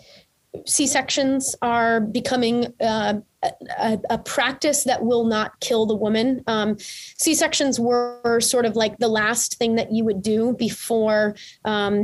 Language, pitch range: English, 220-260 Hz